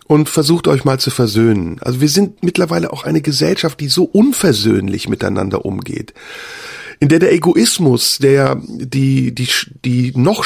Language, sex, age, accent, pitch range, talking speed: German, male, 40-59, German, 115-165 Hz, 155 wpm